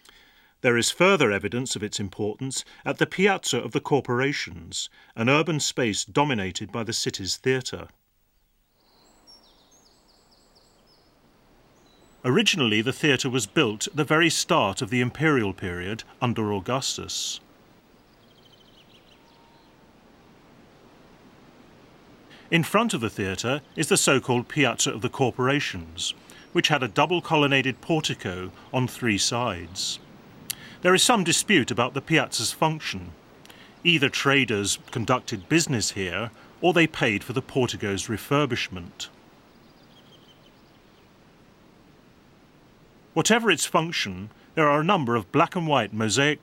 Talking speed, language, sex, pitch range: 110 wpm, English, male, 110-150 Hz